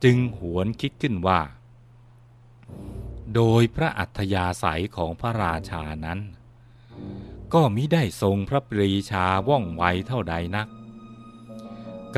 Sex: male